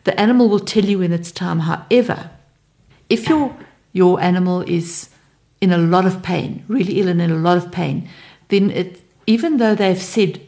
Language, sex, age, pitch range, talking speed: English, female, 60-79, 170-200 Hz, 190 wpm